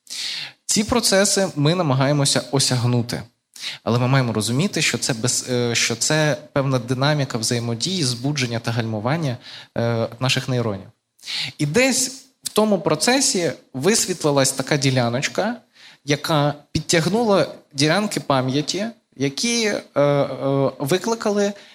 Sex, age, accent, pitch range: male, 20-39, native, 125-165 Hz